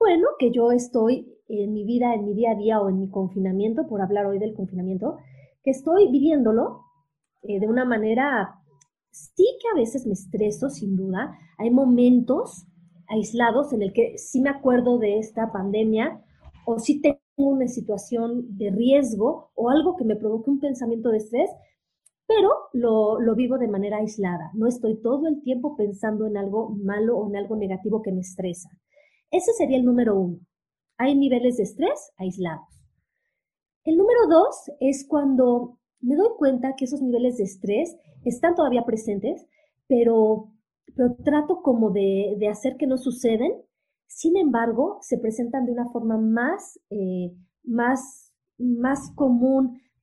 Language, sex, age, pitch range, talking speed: Spanish, female, 30-49, 210-275 Hz, 160 wpm